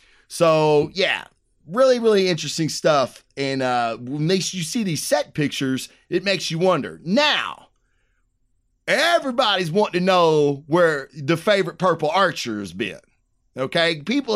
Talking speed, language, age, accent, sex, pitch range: 135 wpm, English, 30-49, American, male, 145-205 Hz